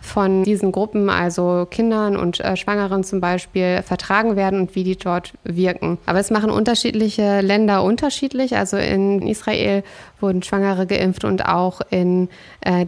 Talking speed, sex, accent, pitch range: 155 wpm, female, German, 190-210 Hz